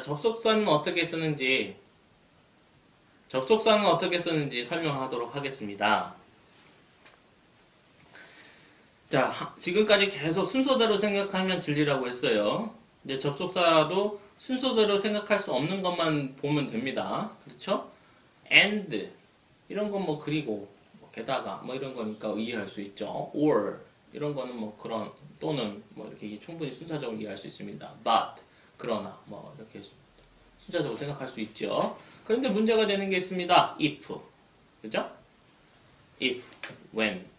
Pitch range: 135-205 Hz